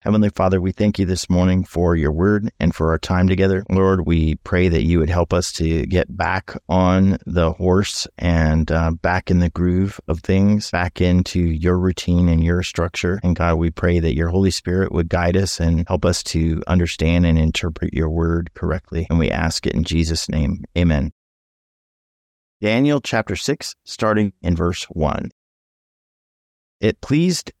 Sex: male